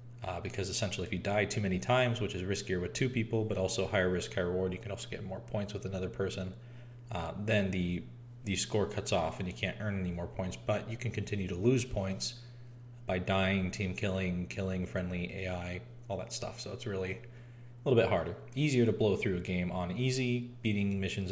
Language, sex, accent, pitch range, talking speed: English, male, American, 95-120 Hz, 220 wpm